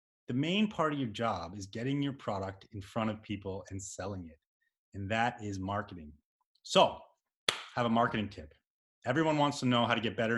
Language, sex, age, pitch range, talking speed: English, male, 30-49, 100-140 Hz, 200 wpm